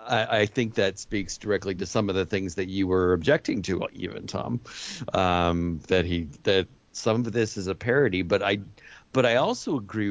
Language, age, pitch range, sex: English, 50-69, 90-105 Hz, male